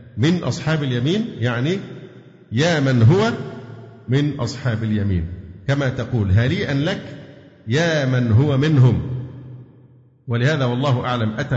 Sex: male